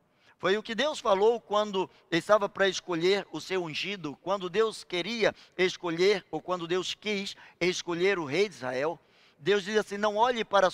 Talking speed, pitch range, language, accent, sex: 180 wpm, 165-225 Hz, Portuguese, Brazilian, male